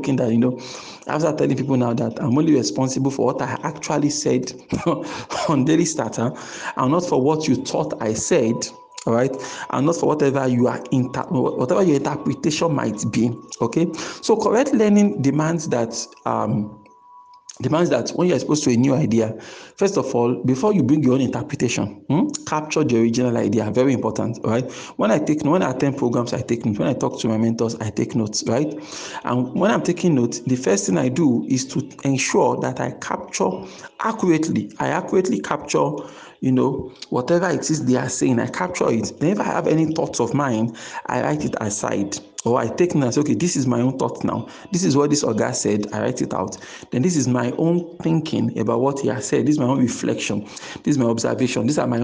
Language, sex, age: English, male, 50-69